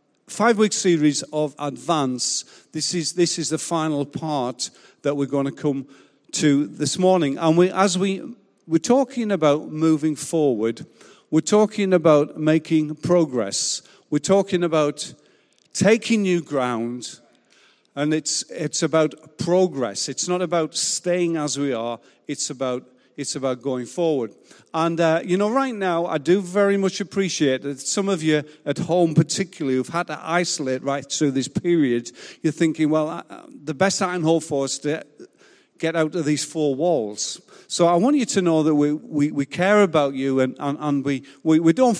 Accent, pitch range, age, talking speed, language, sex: British, 140-175 Hz, 50-69, 175 wpm, English, male